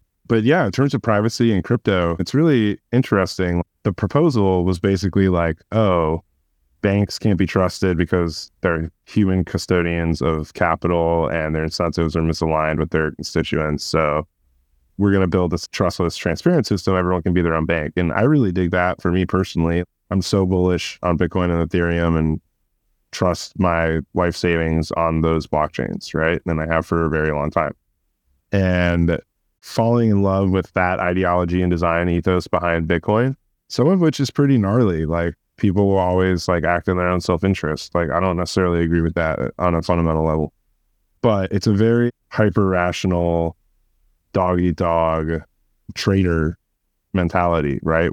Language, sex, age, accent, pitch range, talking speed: English, male, 30-49, American, 80-95 Hz, 165 wpm